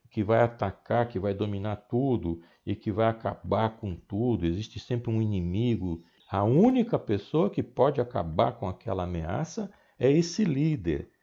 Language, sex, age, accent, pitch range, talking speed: Portuguese, male, 60-79, Brazilian, 100-145 Hz, 155 wpm